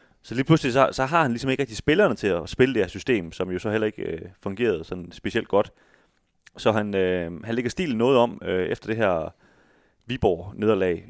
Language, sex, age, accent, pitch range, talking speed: Danish, male, 30-49, native, 90-115 Hz, 215 wpm